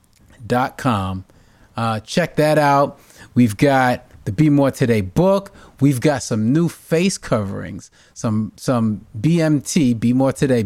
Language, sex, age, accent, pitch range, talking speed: English, male, 30-49, American, 120-165 Hz, 140 wpm